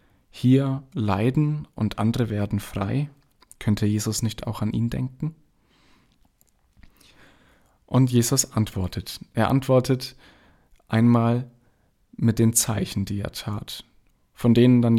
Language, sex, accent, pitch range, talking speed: German, male, German, 105-125 Hz, 110 wpm